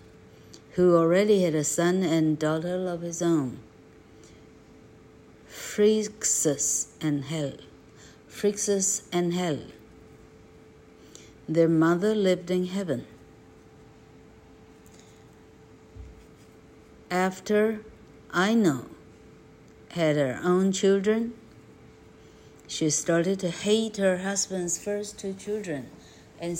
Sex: female